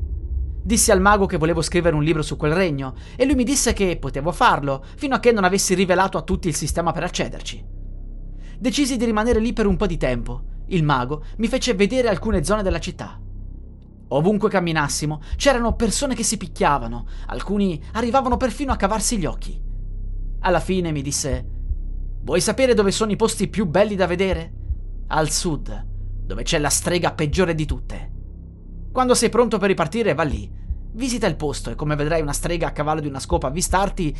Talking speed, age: 185 wpm, 30-49